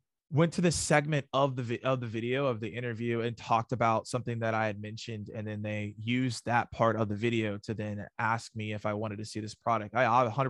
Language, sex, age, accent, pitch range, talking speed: English, male, 20-39, American, 115-130 Hz, 240 wpm